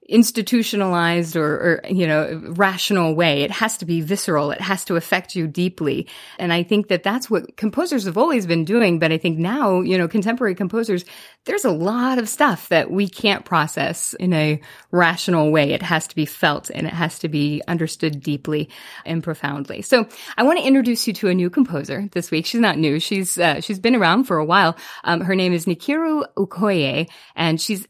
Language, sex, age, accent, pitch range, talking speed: English, female, 30-49, American, 160-210 Hz, 205 wpm